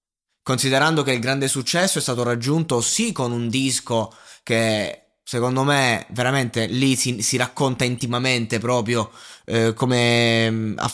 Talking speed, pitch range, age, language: 135 wpm, 115-160 Hz, 20-39, Italian